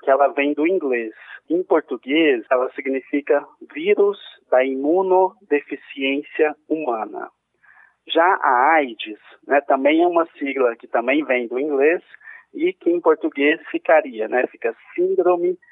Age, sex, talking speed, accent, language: 20-39, male, 130 wpm, Brazilian, Portuguese